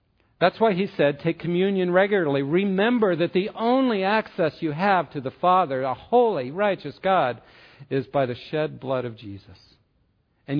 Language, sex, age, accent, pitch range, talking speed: English, male, 50-69, American, 130-185 Hz, 165 wpm